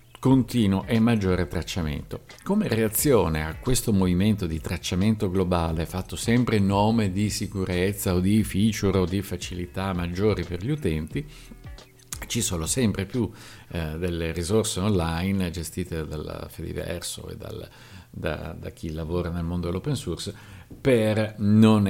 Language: Italian